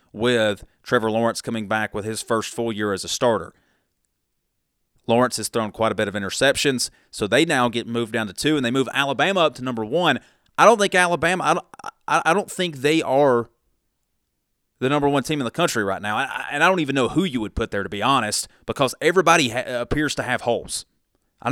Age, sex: 30-49, male